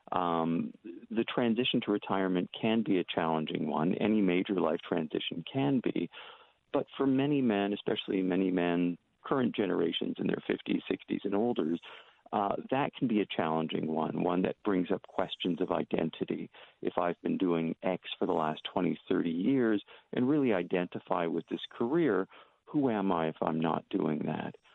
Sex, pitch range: male, 85-110 Hz